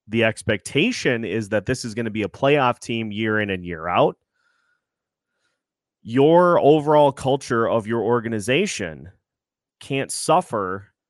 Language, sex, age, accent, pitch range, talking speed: English, male, 30-49, American, 105-145 Hz, 135 wpm